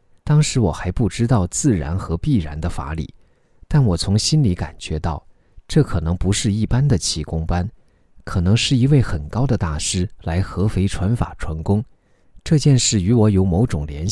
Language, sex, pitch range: Chinese, male, 85-120 Hz